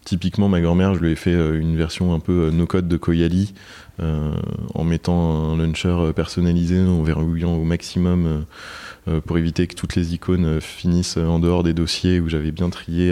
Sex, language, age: male, French, 20-39